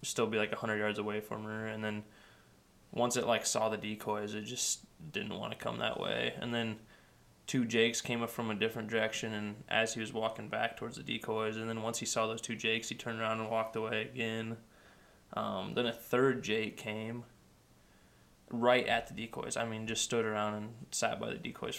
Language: English